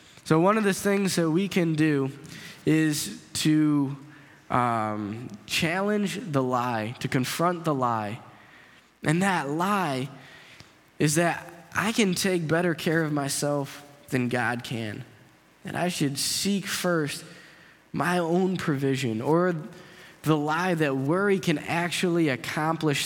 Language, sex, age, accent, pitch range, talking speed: English, male, 10-29, American, 135-175 Hz, 130 wpm